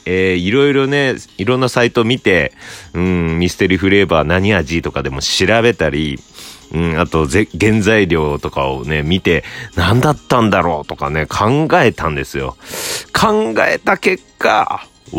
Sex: male